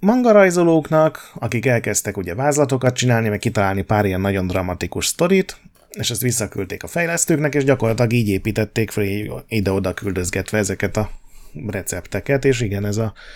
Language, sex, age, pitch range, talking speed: Hungarian, male, 30-49, 95-125 Hz, 145 wpm